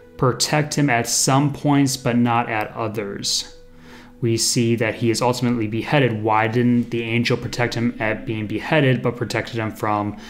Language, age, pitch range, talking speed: English, 30-49, 110-130 Hz, 170 wpm